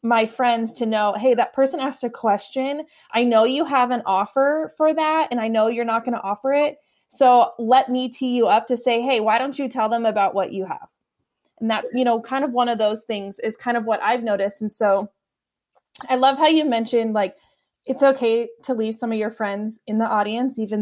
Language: English